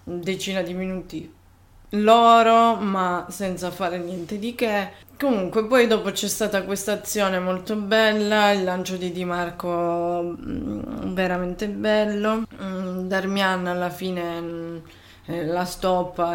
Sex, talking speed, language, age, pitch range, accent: female, 115 wpm, Italian, 20-39, 170-195 Hz, native